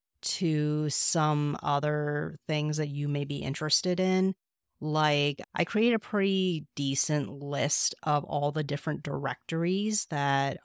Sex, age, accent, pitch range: female, 30-49, American, 140-160 Hz